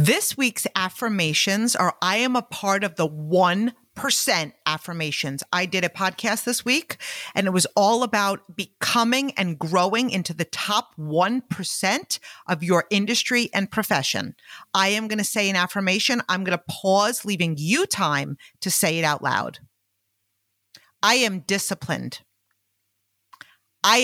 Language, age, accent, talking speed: English, 40-59, American, 145 wpm